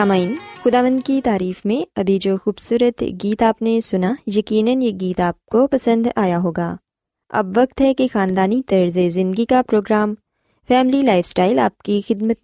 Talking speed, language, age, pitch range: 170 wpm, Urdu, 20-39, 185-255 Hz